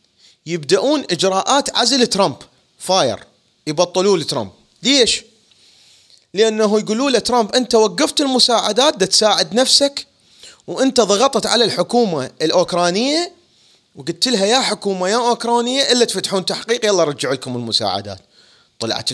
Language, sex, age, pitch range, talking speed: Arabic, male, 30-49, 150-220 Hz, 115 wpm